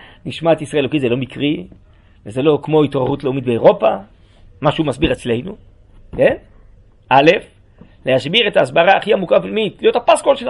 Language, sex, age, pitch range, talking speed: Hebrew, male, 40-59, 105-155 Hz, 155 wpm